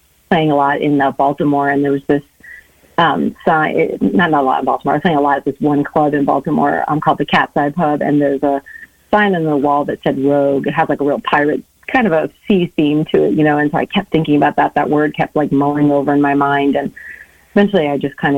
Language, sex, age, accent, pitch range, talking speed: English, female, 30-49, American, 140-155 Hz, 265 wpm